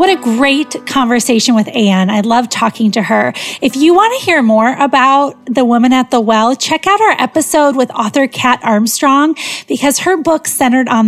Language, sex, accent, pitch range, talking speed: English, female, American, 220-280 Hz, 195 wpm